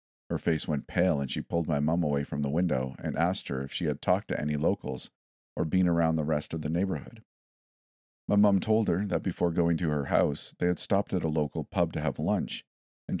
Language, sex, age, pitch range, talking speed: English, male, 40-59, 75-95 Hz, 235 wpm